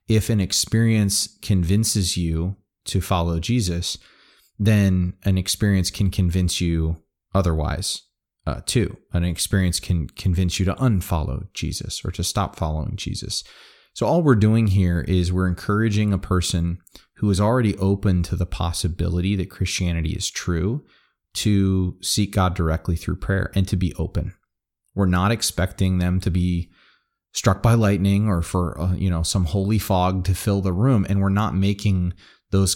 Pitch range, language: 90-100 Hz, English